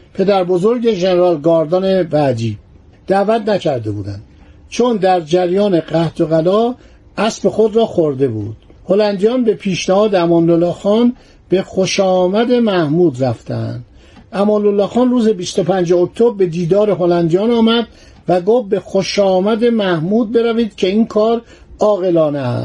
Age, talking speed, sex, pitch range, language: 50-69, 120 wpm, male, 170-215 Hz, Persian